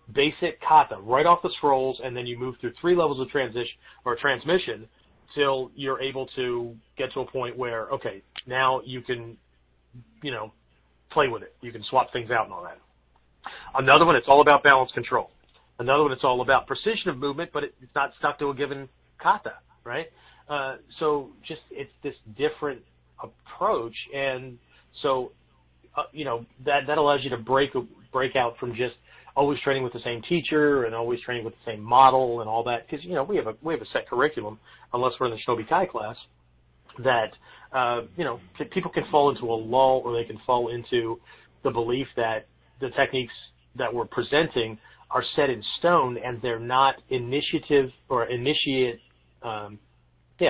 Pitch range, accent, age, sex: 115-140 Hz, American, 40-59, male